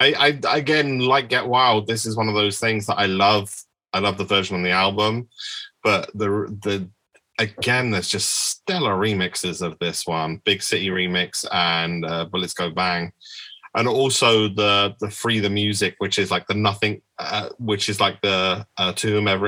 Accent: British